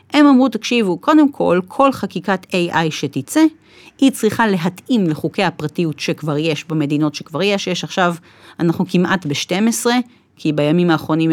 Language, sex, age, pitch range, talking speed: Hebrew, female, 40-59, 155-220 Hz, 145 wpm